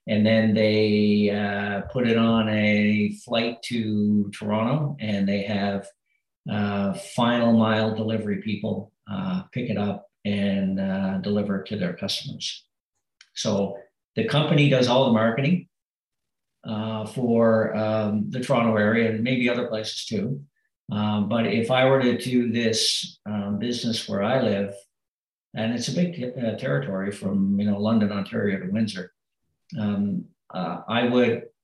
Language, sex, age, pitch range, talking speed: English, male, 50-69, 105-120 Hz, 150 wpm